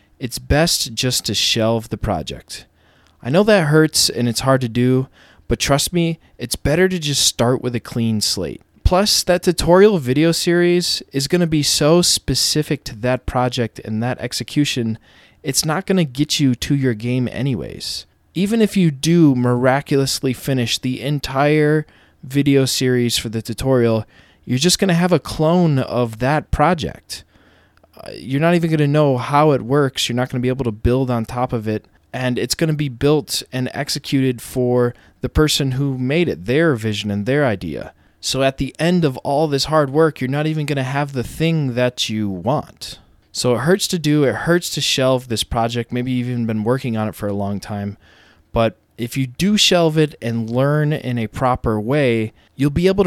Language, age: English, 20-39